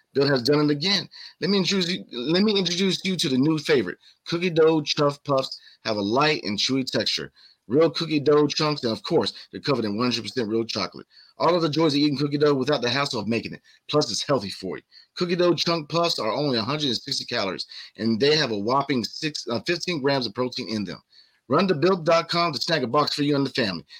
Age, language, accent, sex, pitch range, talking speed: 30-49, English, American, male, 125-165 Hz, 220 wpm